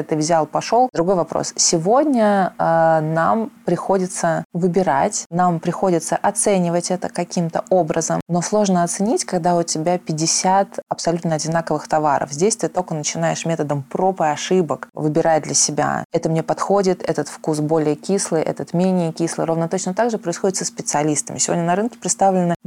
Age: 20-39